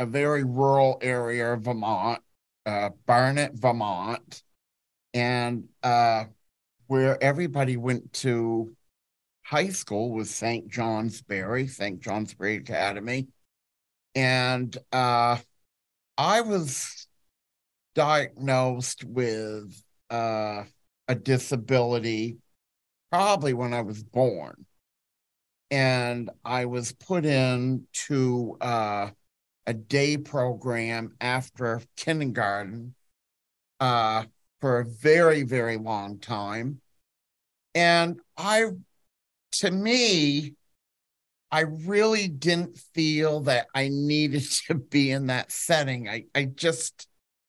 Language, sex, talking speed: English, male, 95 wpm